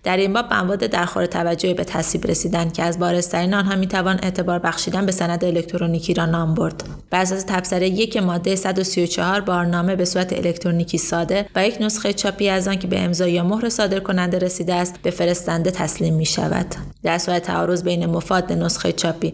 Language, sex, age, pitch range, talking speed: Persian, female, 20-39, 170-195 Hz, 185 wpm